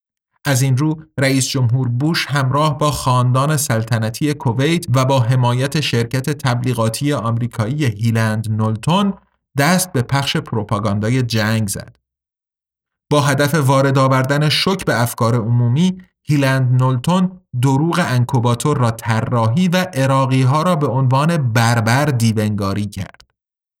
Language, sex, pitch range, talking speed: Persian, male, 120-150 Hz, 120 wpm